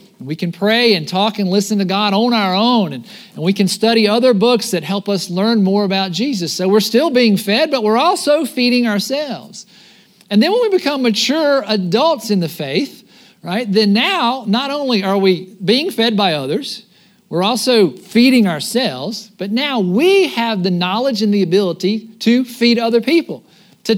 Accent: American